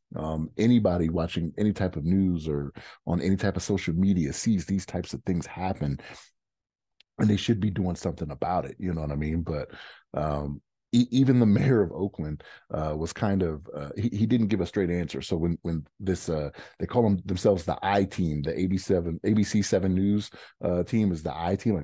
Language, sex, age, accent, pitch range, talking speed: English, male, 30-49, American, 80-100 Hz, 210 wpm